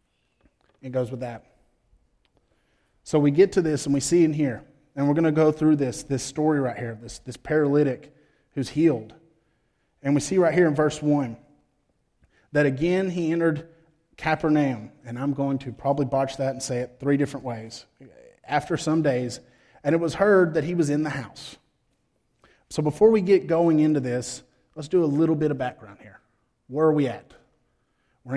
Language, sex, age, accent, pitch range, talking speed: English, male, 30-49, American, 130-150 Hz, 190 wpm